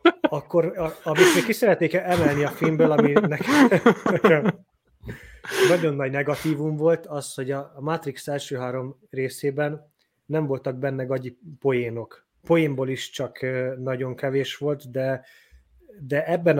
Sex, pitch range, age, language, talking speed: male, 130-165 Hz, 20-39, Hungarian, 125 wpm